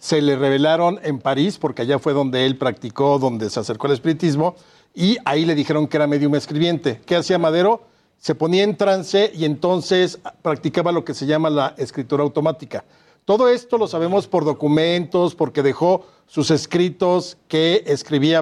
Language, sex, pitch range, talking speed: Spanish, male, 145-180 Hz, 175 wpm